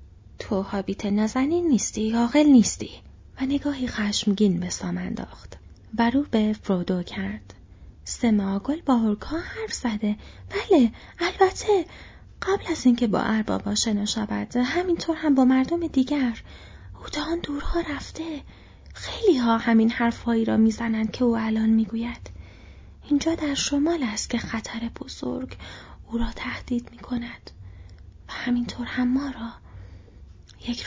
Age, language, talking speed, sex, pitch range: 30-49, Persian, 130 wpm, female, 195-275 Hz